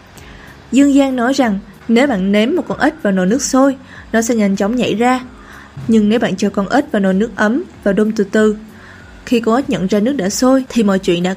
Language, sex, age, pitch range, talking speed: Vietnamese, female, 20-39, 200-250 Hz, 245 wpm